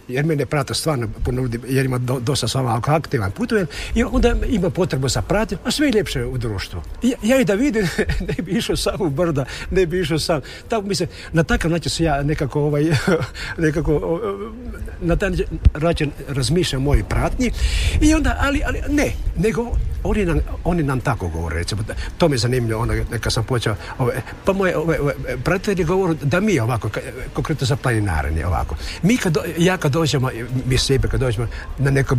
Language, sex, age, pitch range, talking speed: Croatian, male, 60-79, 120-180 Hz, 185 wpm